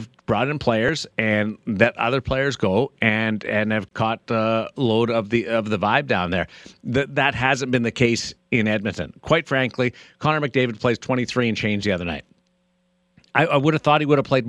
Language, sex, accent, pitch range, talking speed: English, male, American, 105-130 Hz, 205 wpm